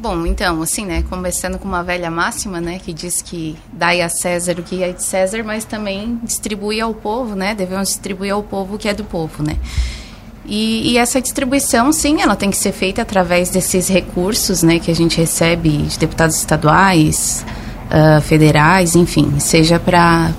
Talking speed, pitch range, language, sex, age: 180 wpm, 155-200 Hz, Portuguese, female, 20-39